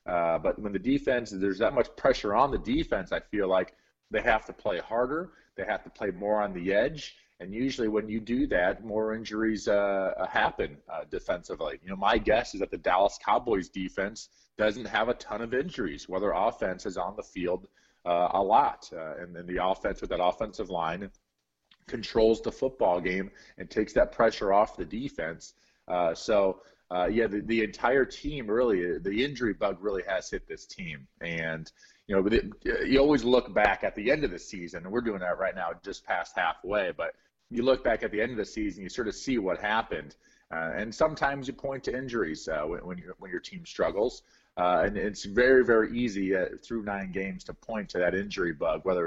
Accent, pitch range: American, 95-125 Hz